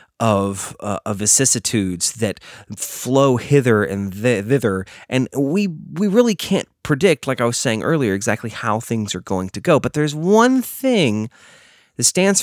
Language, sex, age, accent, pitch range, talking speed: English, male, 30-49, American, 100-150 Hz, 160 wpm